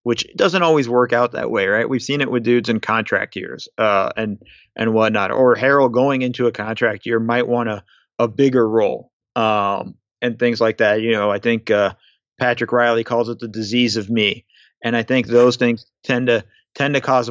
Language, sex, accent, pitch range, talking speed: English, male, American, 110-125 Hz, 210 wpm